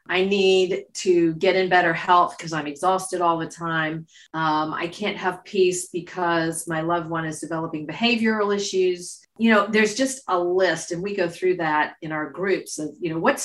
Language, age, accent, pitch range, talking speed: English, 40-59, American, 175-230 Hz, 195 wpm